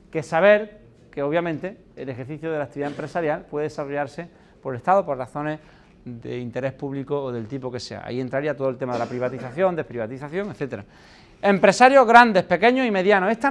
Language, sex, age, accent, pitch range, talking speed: Spanish, male, 40-59, Spanish, 165-230 Hz, 180 wpm